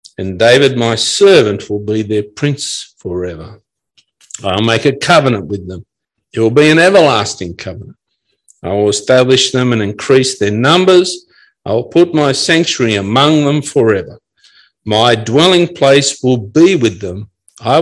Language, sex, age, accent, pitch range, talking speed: English, male, 50-69, Australian, 110-160 Hz, 150 wpm